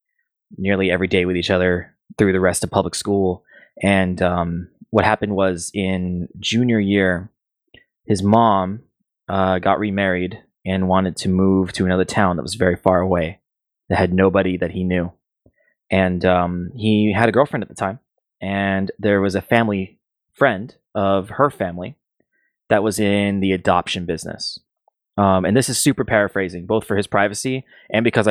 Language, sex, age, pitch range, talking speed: English, male, 20-39, 90-105 Hz, 165 wpm